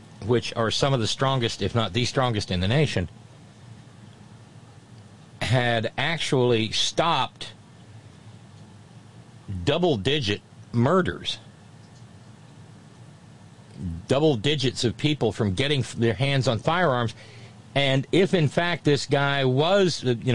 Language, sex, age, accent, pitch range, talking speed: English, male, 50-69, American, 105-135 Hz, 105 wpm